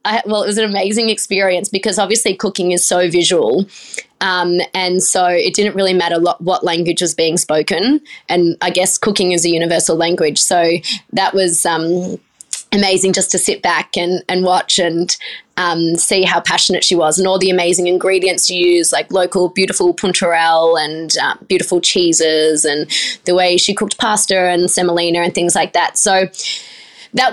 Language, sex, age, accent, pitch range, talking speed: English, female, 20-39, Australian, 175-200 Hz, 180 wpm